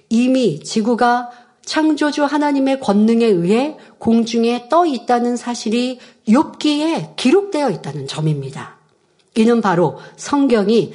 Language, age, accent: Korean, 40-59, native